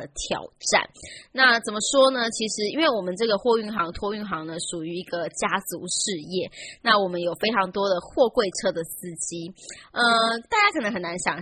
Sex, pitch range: female, 180-235 Hz